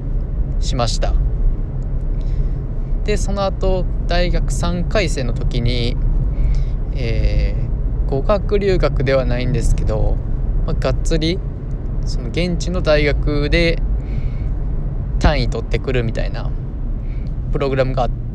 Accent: native